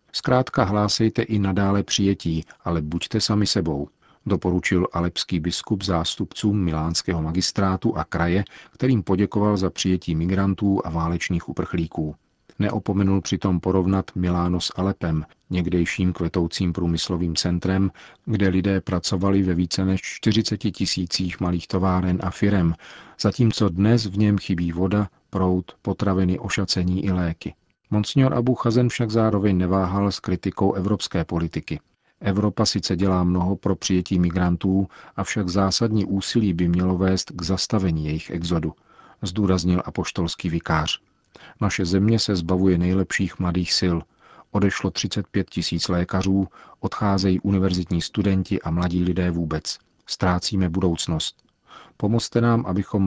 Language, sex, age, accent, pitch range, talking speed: Czech, male, 40-59, native, 90-100 Hz, 125 wpm